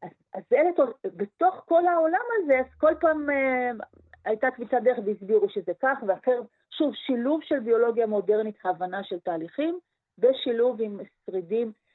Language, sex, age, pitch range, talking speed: Hebrew, female, 40-59, 180-235 Hz, 145 wpm